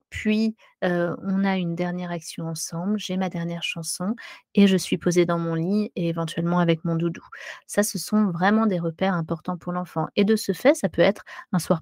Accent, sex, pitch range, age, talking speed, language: French, female, 170-200 Hz, 30-49, 215 wpm, French